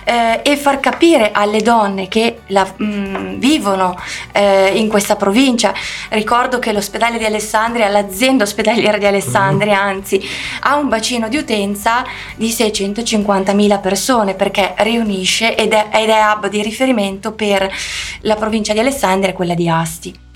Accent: native